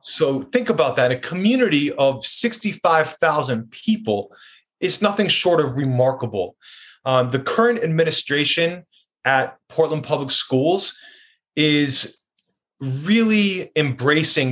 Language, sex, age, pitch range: English, male, 30-49, 130-160 Hz